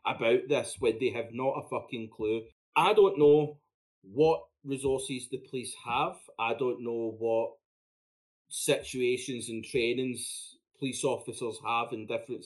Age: 30-49